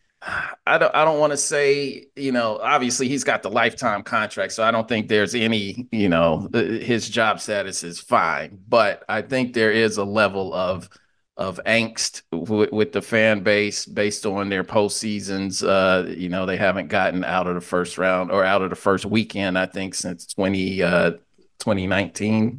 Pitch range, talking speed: 100-130 Hz, 185 wpm